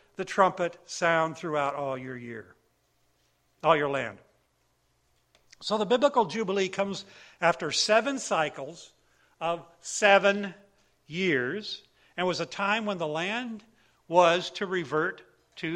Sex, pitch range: male, 165-225 Hz